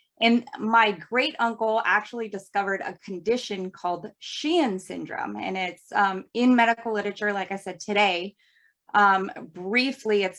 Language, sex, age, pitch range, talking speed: English, female, 20-39, 190-230 Hz, 140 wpm